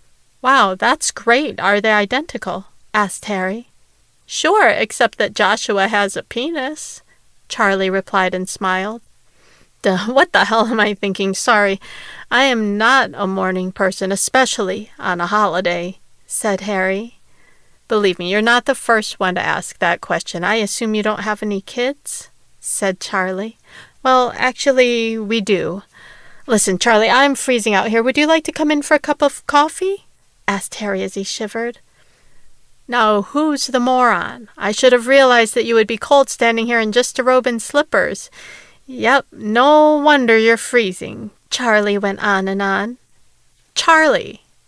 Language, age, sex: English, 40-59, female